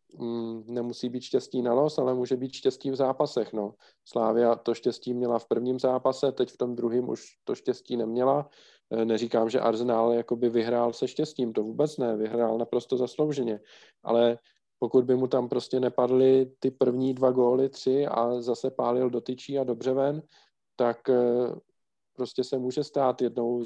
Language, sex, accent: Czech, male, native